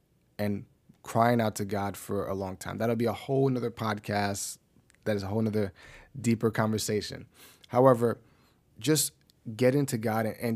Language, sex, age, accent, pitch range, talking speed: English, male, 30-49, American, 105-125 Hz, 160 wpm